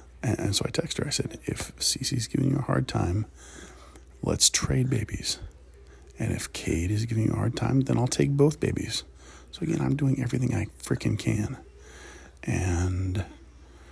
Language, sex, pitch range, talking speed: English, male, 65-110 Hz, 175 wpm